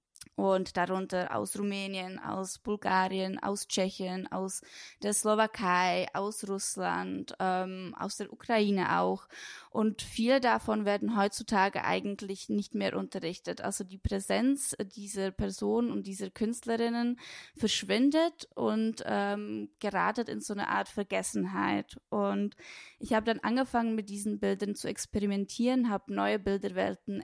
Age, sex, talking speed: 20-39, female, 125 wpm